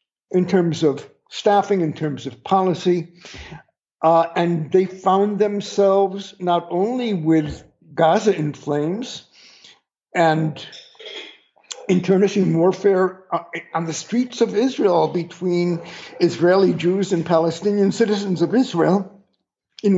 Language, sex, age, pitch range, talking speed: English, male, 60-79, 155-200 Hz, 110 wpm